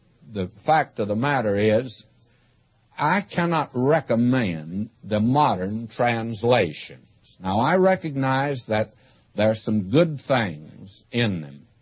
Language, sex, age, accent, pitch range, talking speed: English, male, 60-79, American, 110-160 Hz, 115 wpm